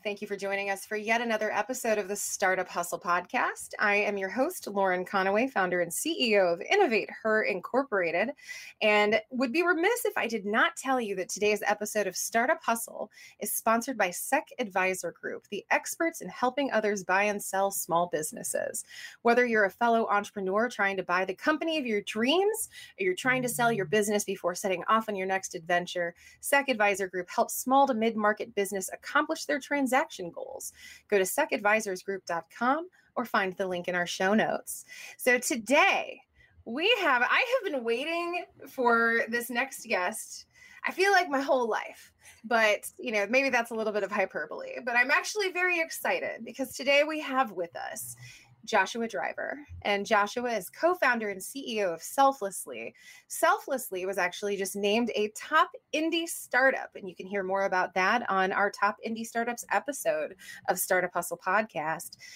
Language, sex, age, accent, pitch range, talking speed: English, female, 20-39, American, 195-280 Hz, 180 wpm